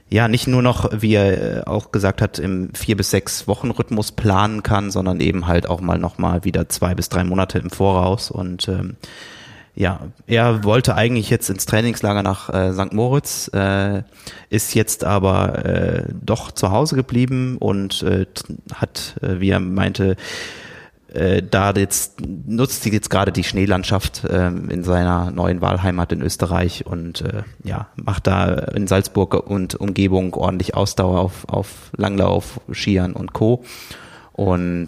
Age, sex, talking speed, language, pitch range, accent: 30-49, male, 155 wpm, German, 90-105 Hz, German